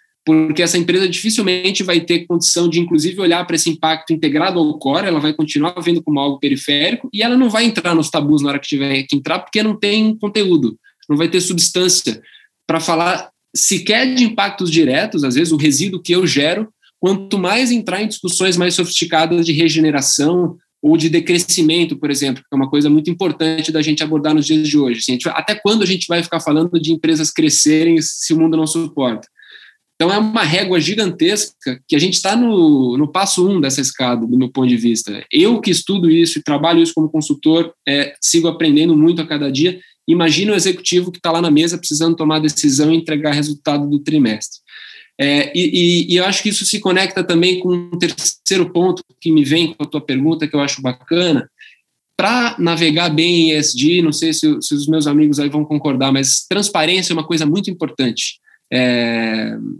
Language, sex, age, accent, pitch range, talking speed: Portuguese, male, 10-29, Brazilian, 150-180 Hz, 205 wpm